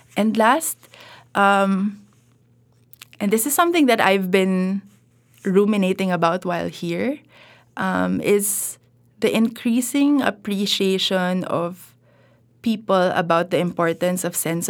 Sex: female